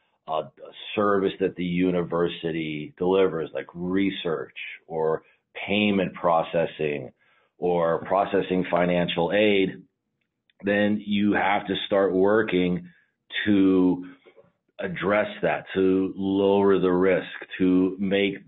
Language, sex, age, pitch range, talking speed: English, male, 40-59, 90-100 Hz, 95 wpm